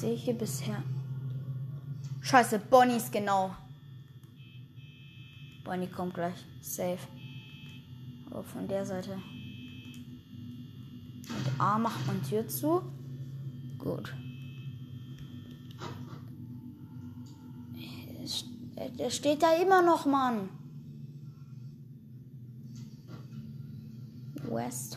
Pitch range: 125-150 Hz